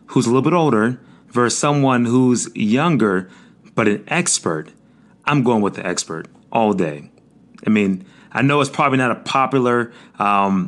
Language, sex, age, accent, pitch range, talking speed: English, male, 30-49, American, 100-135 Hz, 165 wpm